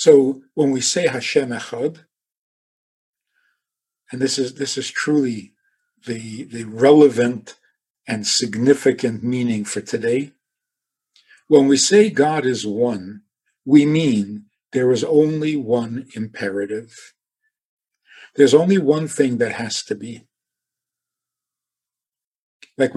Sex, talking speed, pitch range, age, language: male, 105 wpm, 115-145 Hz, 50-69, English